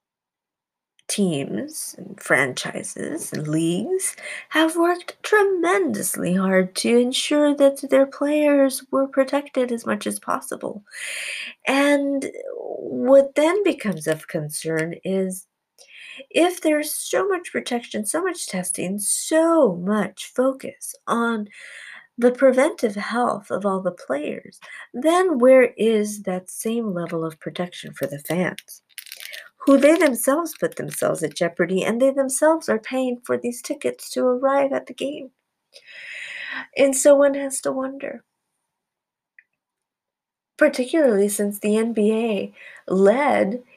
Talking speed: 120 wpm